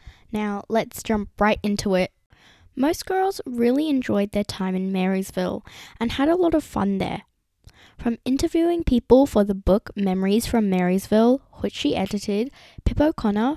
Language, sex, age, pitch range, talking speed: English, female, 10-29, 190-250 Hz, 155 wpm